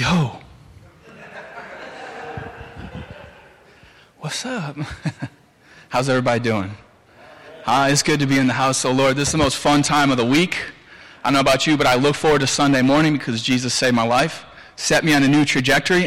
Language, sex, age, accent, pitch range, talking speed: English, male, 20-39, American, 115-145 Hz, 180 wpm